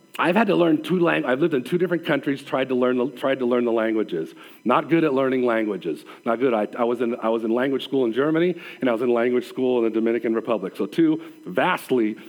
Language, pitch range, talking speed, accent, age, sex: English, 140-220 Hz, 225 wpm, American, 40-59, male